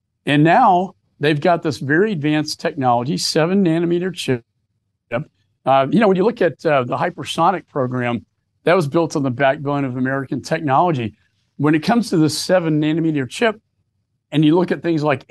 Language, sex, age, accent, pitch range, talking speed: English, male, 50-69, American, 125-160 Hz, 170 wpm